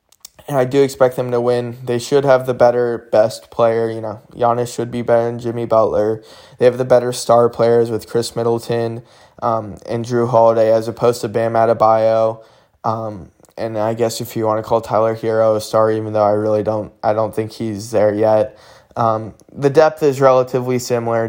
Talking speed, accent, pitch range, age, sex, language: 200 wpm, American, 110-120 Hz, 20-39, male, English